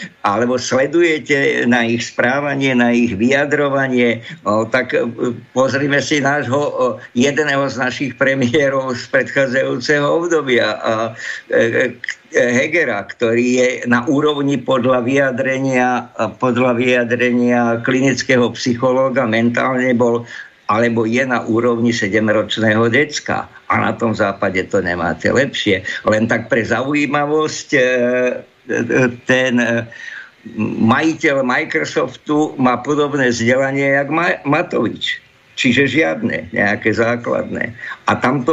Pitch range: 120-140 Hz